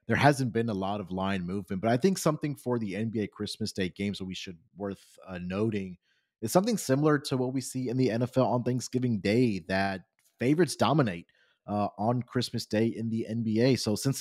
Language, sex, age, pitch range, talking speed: English, male, 30-49, 100-130 Hz, 205 wpm